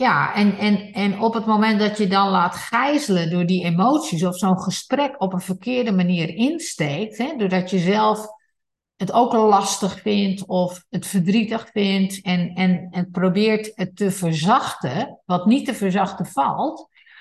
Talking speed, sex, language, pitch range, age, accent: 165 wpm, female, Dutch, 180-230 Hz, 50-69, Dutch